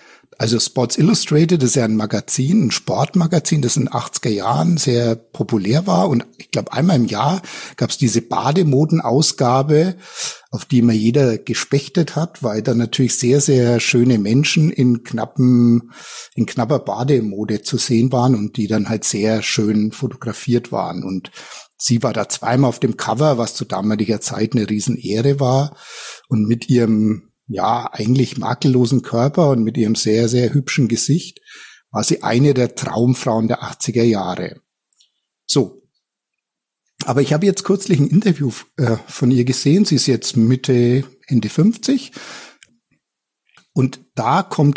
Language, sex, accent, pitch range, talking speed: German, male, German, 115-150 Hz, 155 wpm